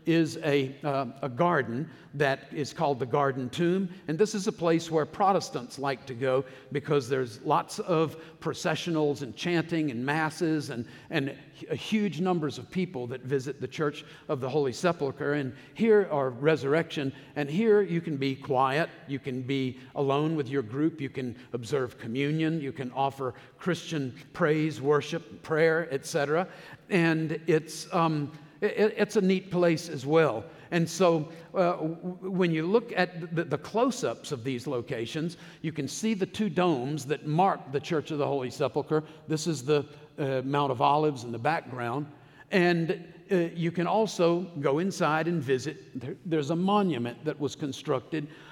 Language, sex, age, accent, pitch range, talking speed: English, male, 50-69, American, 140-170 Hz, 165 wpm